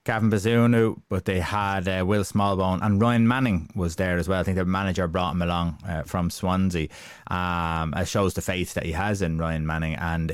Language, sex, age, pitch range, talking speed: English, male, 20-39, 80-105 Hz, 215 wpm